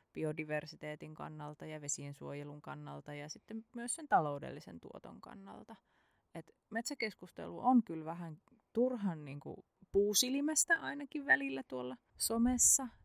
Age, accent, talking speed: 20-39, native, 110 wpm